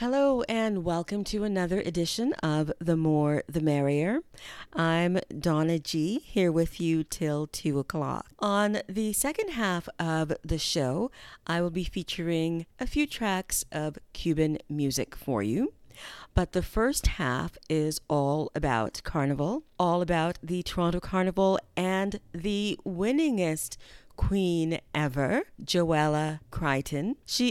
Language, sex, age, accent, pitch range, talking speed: English, female, 40-59, American, 155-205 Hz, 130 wpm